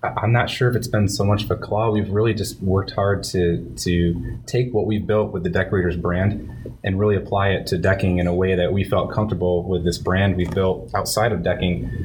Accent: American